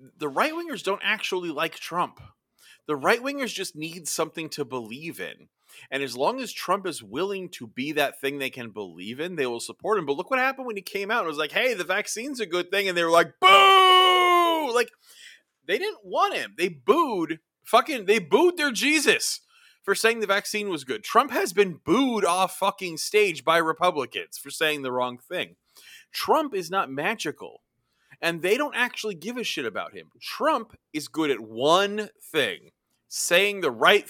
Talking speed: 190 wpm